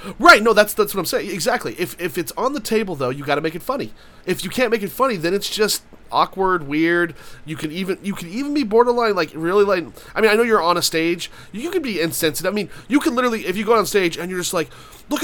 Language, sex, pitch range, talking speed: English, male, 150-200 Hz, 275 wpm